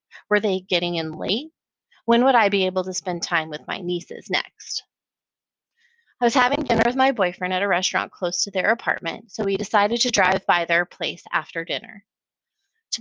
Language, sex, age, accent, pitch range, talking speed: English, female, 30-49, American, 190-240 Hz, 195 wpm